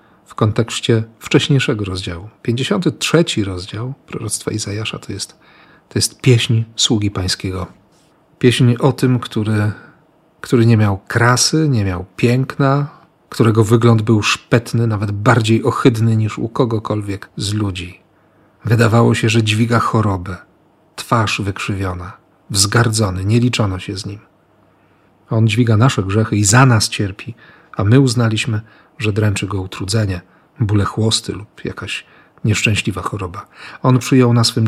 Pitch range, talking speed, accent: 105-135 Hz, 130 wpm, native